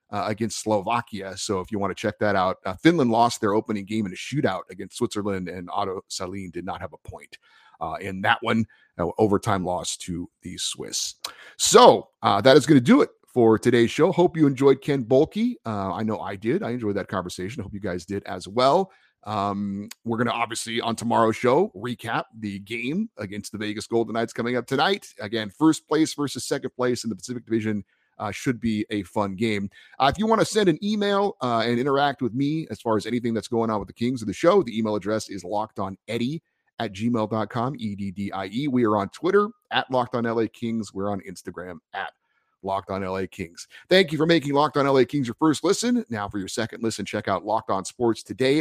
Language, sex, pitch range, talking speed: English, male, 105-140 Hz, 220 wpm